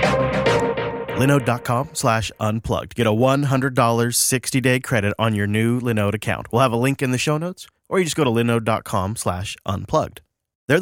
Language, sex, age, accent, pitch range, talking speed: English, male, 30-49, American, 110-140 Hz, 165 wpm